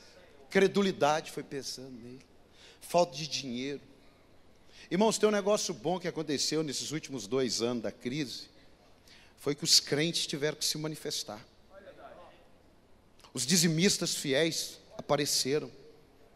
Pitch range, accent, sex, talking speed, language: 140-195 Hz, Brazilian, male, 115 wpm, Portuguese